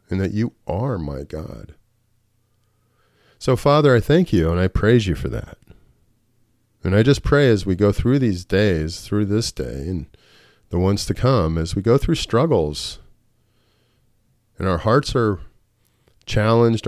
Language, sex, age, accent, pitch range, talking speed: English, male, 40-59, American, 85-115 Hz, 160 wpm